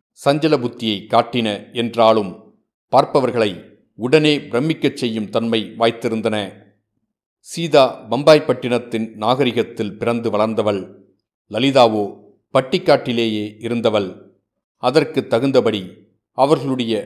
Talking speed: 65 wpm